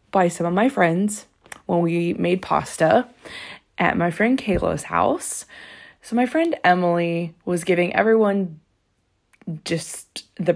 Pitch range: 165-240 Hz